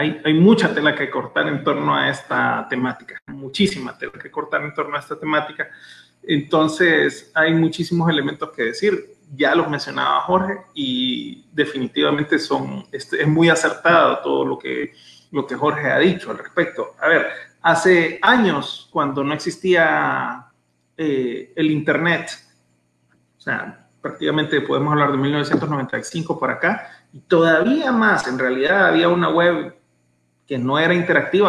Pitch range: 140-200 Hz